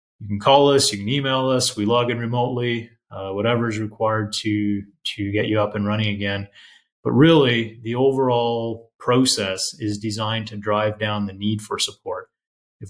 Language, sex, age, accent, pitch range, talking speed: English, male, 30-49, American, 105-115 Hz, 180 wpm